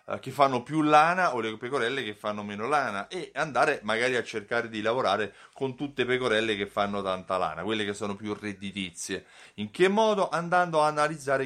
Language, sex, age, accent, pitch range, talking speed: Italian, male, 30-49, native, 110-140 Hz, 195 wpm